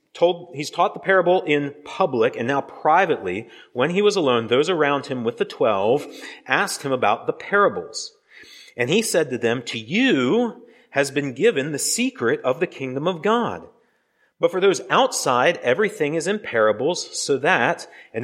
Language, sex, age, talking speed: English, male, 30-49, 170 wpm